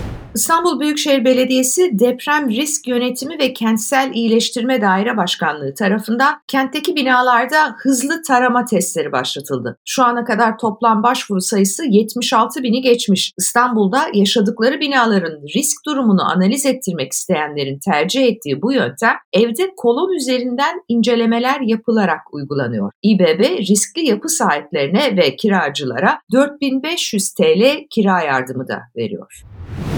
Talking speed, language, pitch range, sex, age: 115 wpm, Turkish, 190-265 Hz, female, 50-69